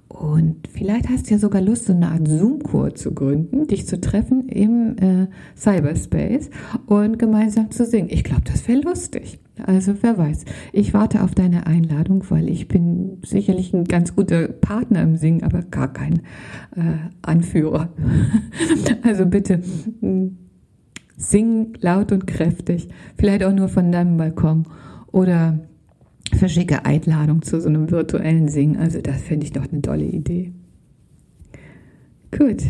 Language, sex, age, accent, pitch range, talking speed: German, female, 50-69, German, 155-195 Hz, 145 wpm